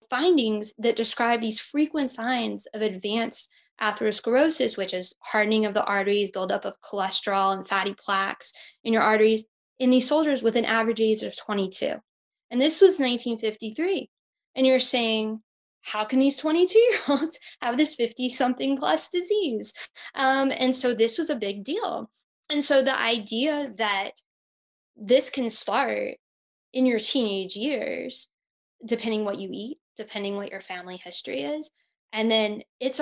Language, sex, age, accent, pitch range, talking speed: English, female, 10-29, American, 205-265 Hz, 155 wpm